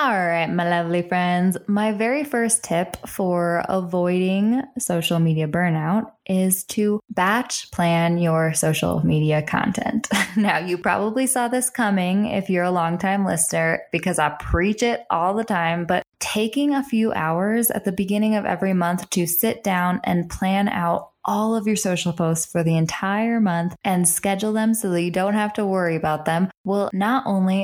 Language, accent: English, American